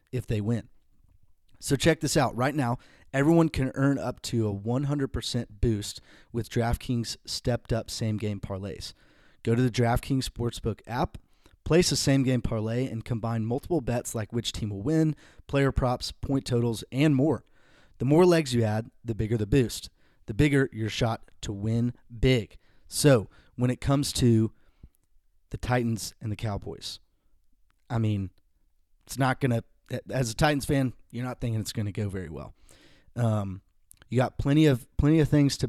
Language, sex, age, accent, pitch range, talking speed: English, male, 30-49, American, 105-135 Hz, 175 wpm